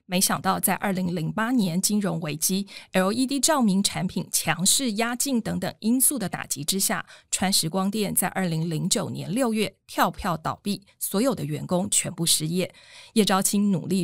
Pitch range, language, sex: 170-215 Hz, Chinese, female